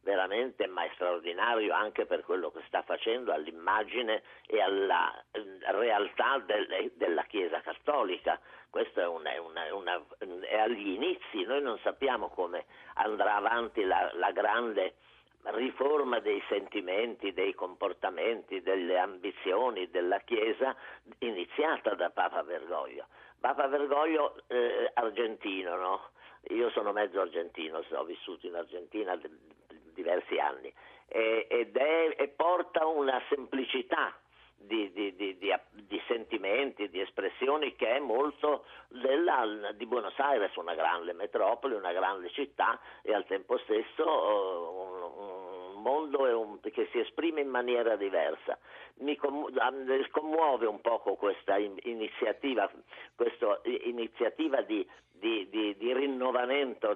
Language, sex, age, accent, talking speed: Italian, male, 50-69, native, 130 wpm